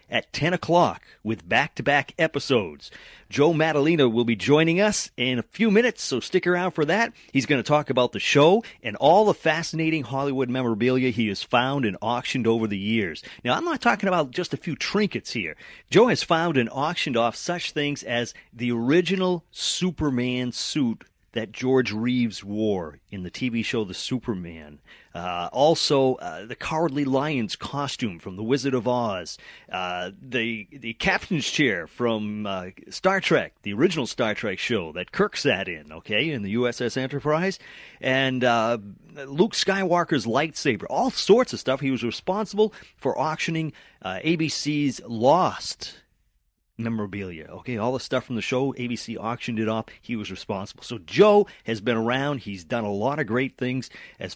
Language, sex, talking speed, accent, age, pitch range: English, male, 170 wpm, American, 40-59, 110-155 Hz